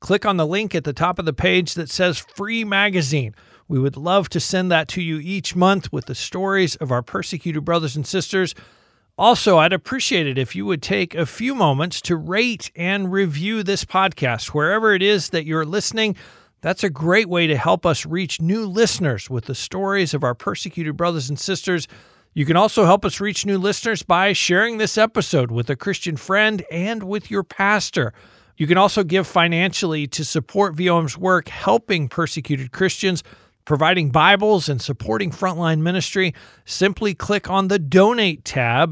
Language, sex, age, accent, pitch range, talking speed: English, male, 50-69, American, 155-195 Hz, 185 wpm